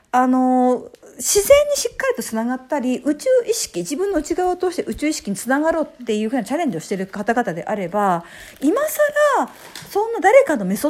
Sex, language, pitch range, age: female, Japanese, 210-330 Hz, 50-69